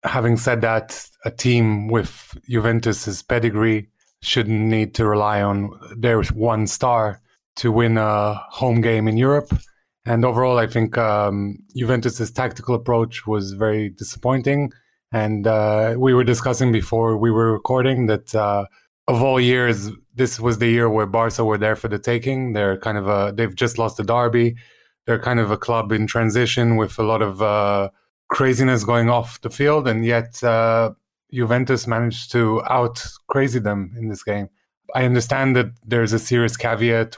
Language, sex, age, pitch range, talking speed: English, male, 20-39, 110-125 Hz, 165 wpm